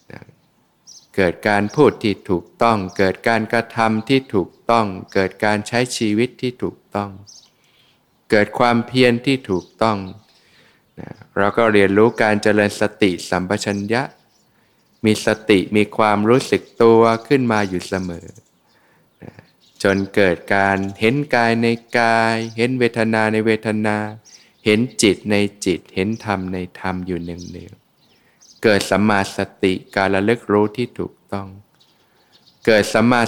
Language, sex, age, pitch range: Thai, male, 20-39, 95-115 Hz